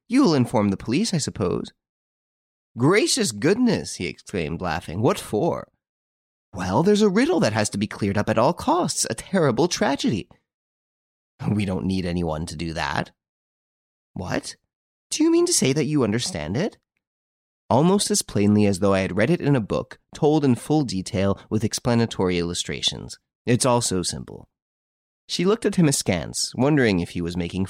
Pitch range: 90-145 Hz